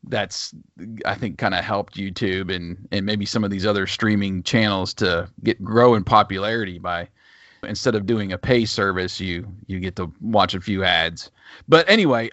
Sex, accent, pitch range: male, American, 100-130 Hz